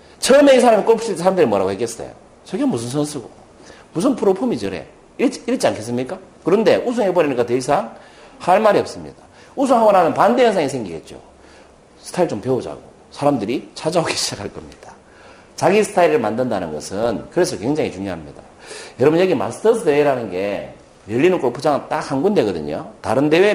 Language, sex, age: Korean, male, 40-59